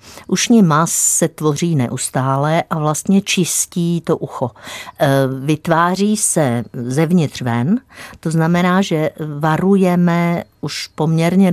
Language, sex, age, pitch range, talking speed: Czech, female, 50-69, 130-165 Hz, 105 wpm